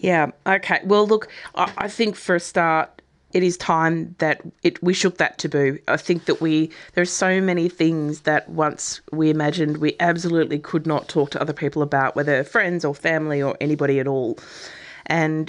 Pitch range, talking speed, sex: 155-185 Hz, 195 wpm, female